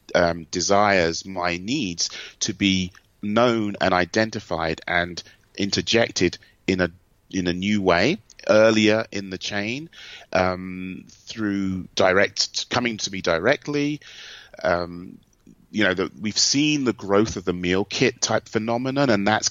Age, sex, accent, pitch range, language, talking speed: 30-49, male, British, 90-110 Hz, English, 135 wpm